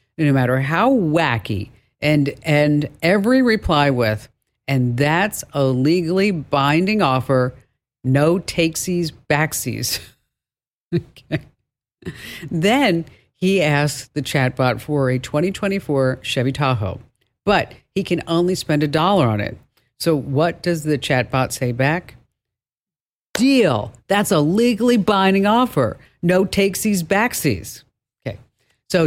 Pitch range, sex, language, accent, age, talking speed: 130-170 Hz, female, English, American, 50-69, 115 wpm